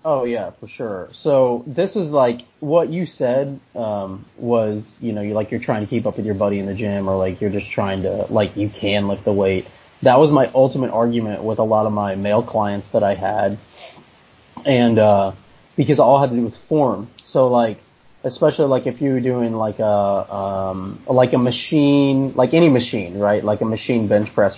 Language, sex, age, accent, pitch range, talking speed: English, male, 30-49, American, 105-135 Hz, 215 wpm